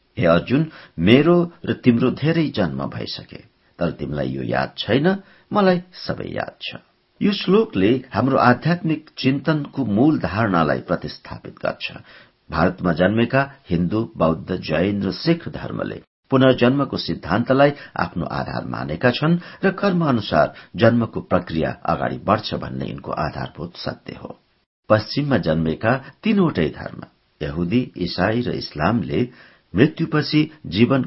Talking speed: 120 wpm